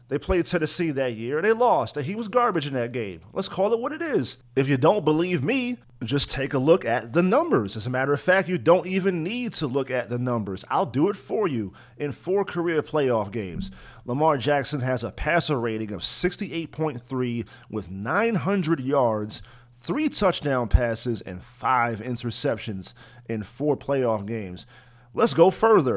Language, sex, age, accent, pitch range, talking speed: English, male, 40-59, American, 120-160 Hz, 185 wpm